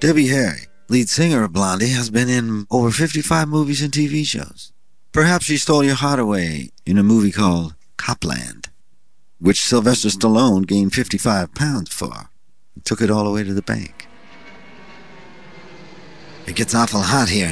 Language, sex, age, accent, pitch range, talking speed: English, male, 50-69, American, 90-120 Hz, 160 wpm